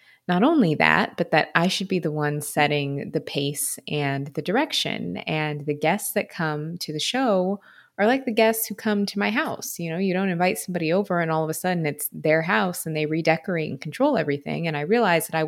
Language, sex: English, female